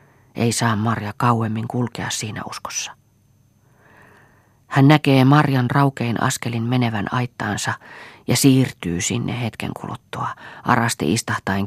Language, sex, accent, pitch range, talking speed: Finnish, female, native, 115-135 Hz, 110 wpm